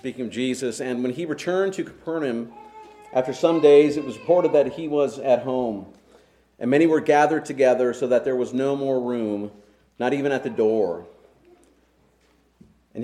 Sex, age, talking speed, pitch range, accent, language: male, 40-59, 175 wpm, 120-160 Hz, American, English